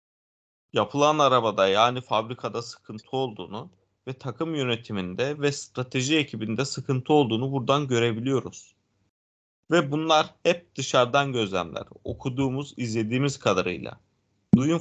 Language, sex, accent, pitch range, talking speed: Turkish, male, native, 115-165 Hz, 100 wpm